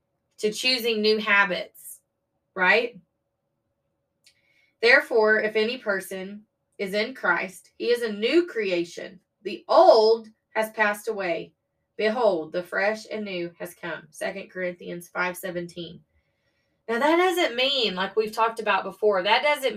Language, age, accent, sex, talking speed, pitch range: English, 20-39, American, female, 130 wpm, 190-250 Hz